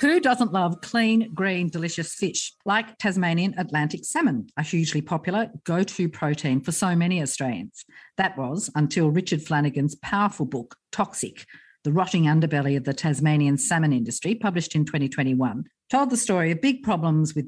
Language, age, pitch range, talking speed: English, 50-69, 150-200 Hz, 160 wpm